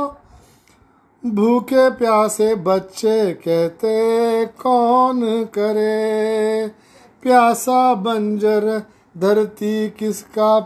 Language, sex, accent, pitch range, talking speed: Marathi, male, native, 215-245 Hz, 55 wpm